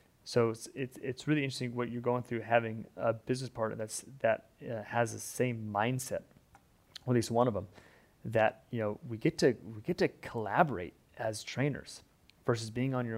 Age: 30-49